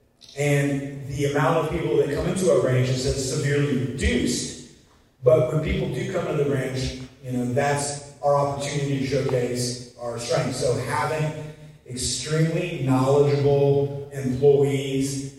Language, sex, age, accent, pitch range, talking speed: English, male, 30-49, American, 125-145 Hz, 135 wpm